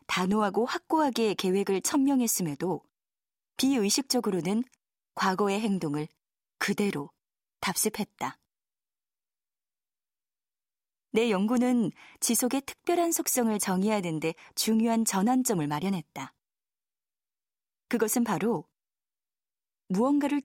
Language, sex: Korean, female